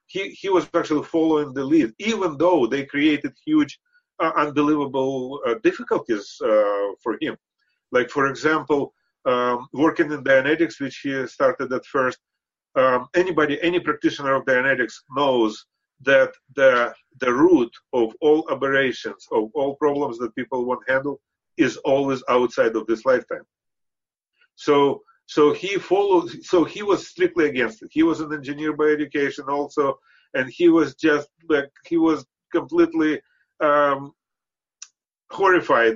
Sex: male